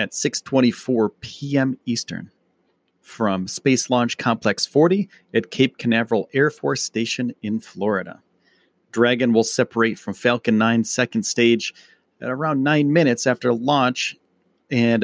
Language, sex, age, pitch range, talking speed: English, male, 40-59, 110-135 Hz, 130 wpm